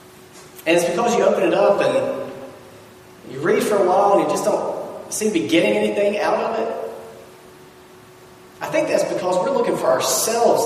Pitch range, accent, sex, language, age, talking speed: 160-235 Hz, American, male, English, 30-49, 185 wpm